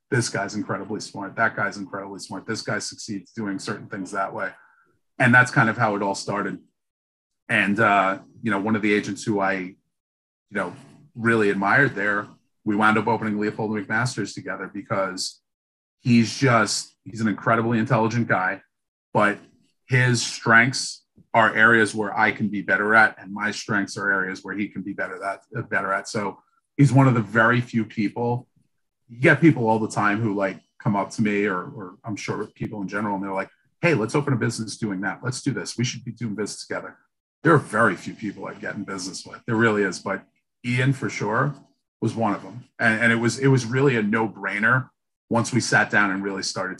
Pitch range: 100-115 Hz